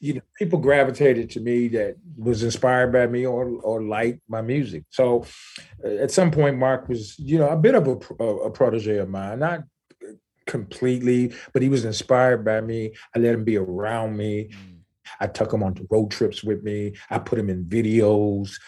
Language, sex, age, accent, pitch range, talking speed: English, male, 30-49, American, 95-120 Hz, 190 wpm